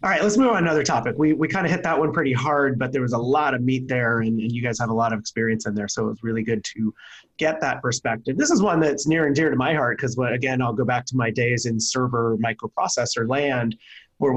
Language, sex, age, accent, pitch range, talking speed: English, male, 30-49, American, 115-130 Hz, 280 wpm